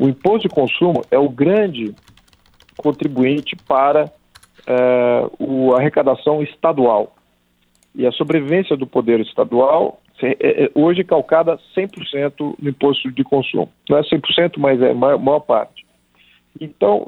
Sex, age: male, 50-69